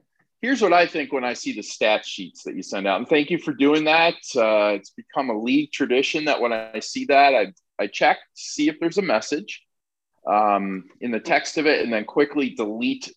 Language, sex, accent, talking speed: English, male, American, 230 wpm